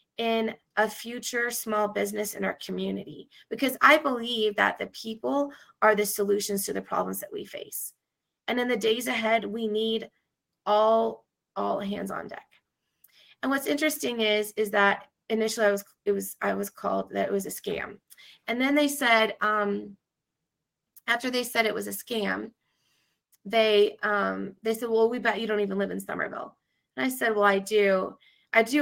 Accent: American